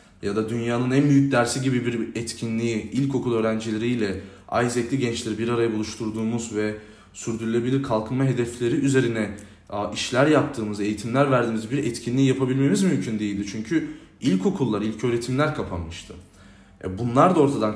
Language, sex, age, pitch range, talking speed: Turkish, male, 20-39, 95-125 Hz, 130 wpm